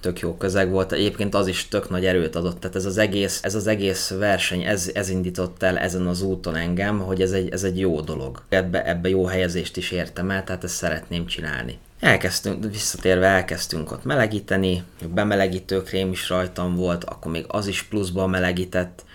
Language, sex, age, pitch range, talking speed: Hungarian, male, 30-49, 90-100 Hz, 190 wpm